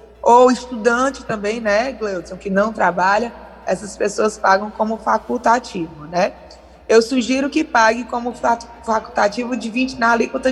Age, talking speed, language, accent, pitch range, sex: 20-39, 125 wpm, Portuguese, Brazilian, 195-255 Hz, female